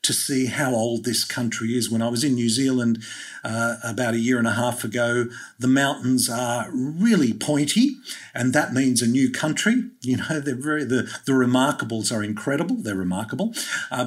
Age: 50-69